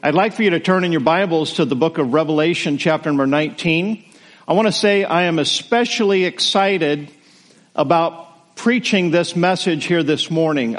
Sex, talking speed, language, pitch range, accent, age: male, 180 wpm, English, 165-205 Hz, American, 50-69